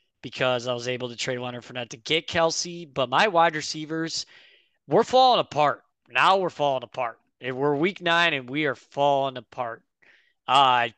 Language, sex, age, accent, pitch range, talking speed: English, male, 20-39, American, 125-155 Hz, 175 wpm